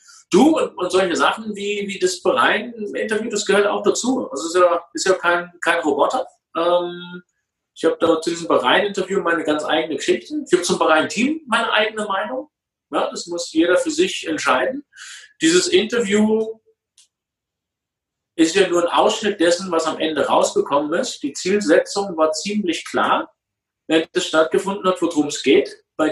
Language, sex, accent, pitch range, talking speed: German, male, German, 160-240 Hz, 165 wpm